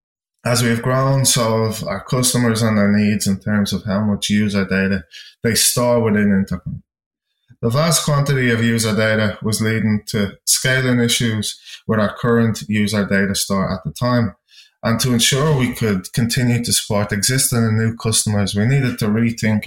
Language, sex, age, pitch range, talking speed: English, male, 20-39, 105-125 Hz, 175 wpm